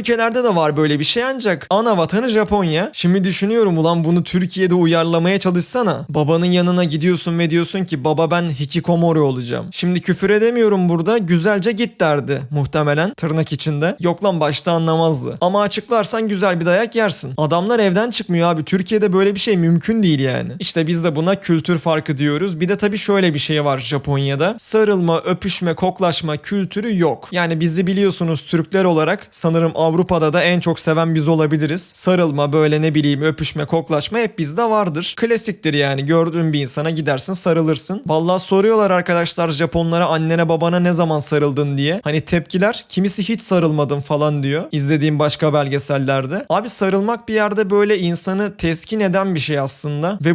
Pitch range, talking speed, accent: 160-200 Hz, 165 wpm, native